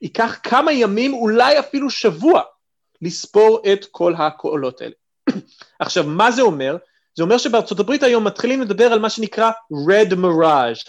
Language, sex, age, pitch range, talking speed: Hebrew, male, 30-49, 170-245 Hz, 145 wpm